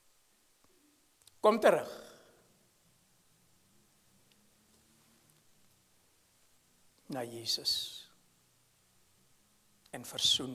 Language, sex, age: English, male, 60-79